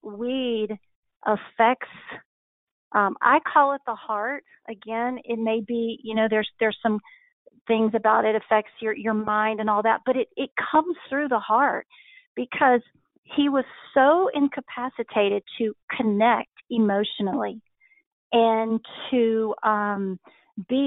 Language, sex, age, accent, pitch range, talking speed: English, female, 40-59, American, 215-255 Hz, 130 wpm